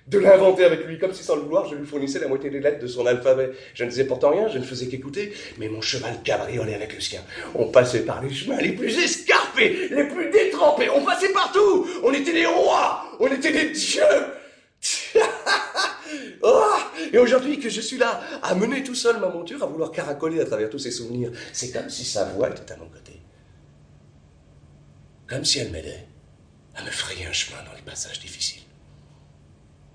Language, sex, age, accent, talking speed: French, male, 40-59, French, 200 wpm